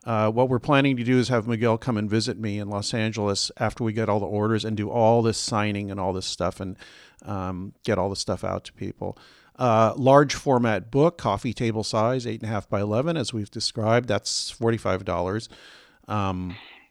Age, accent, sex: 40-59, American, male